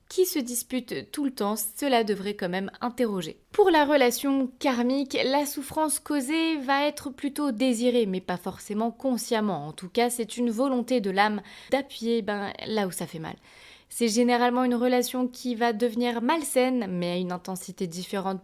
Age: 20-39